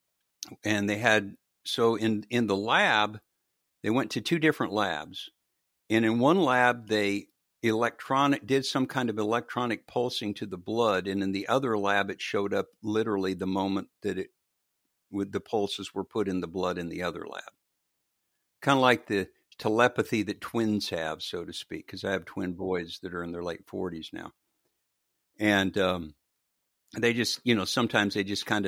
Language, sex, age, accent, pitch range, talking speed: English, male, 60-79, American, 95-115 Hz, 180 wpm